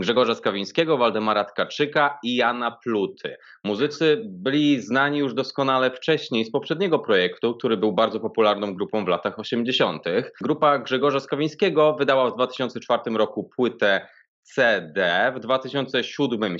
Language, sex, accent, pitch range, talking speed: Polish, male, native, 110-150 Hz, 125 wpm